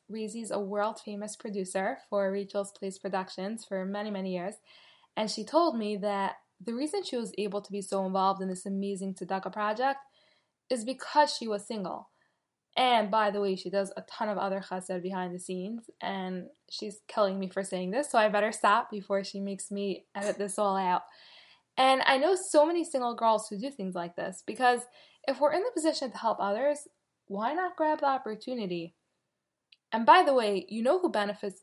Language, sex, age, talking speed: English, female, 10-29, 195 wpm